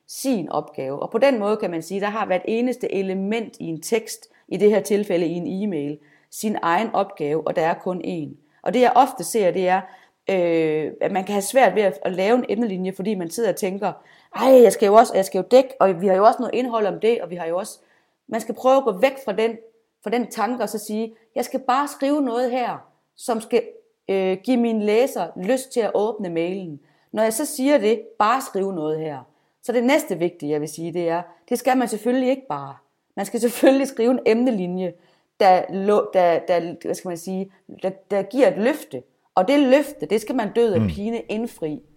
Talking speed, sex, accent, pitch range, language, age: 230 wpm, female, native, 170-235 Hz, Danish, 30-49